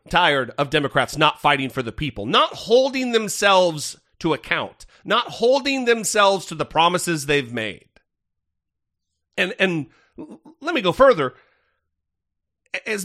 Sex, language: male, English